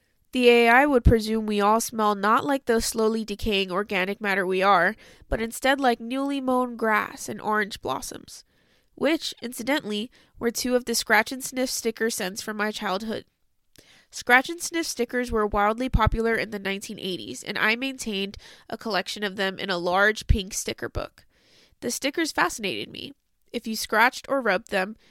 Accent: American